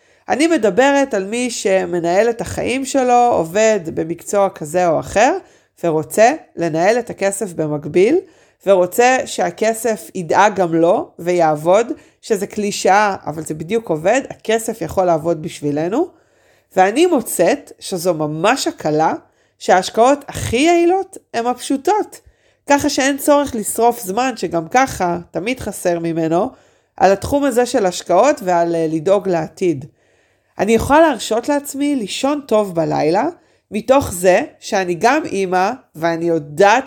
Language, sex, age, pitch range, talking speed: Hebrew, female, 40-59, 175-270 Hz, 125 wpm